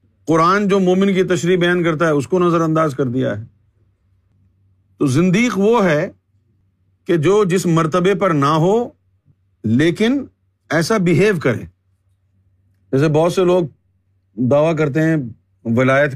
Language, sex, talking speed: Urdu, male, 140 wpm